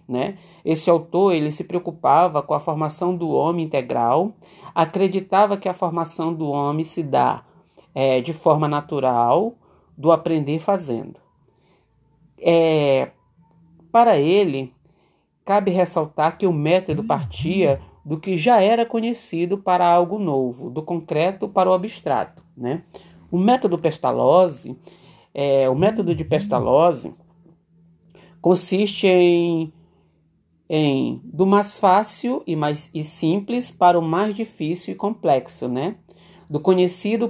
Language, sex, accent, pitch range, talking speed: Portuguese, male, Brazilian, 150-185 Hz, 115 wpm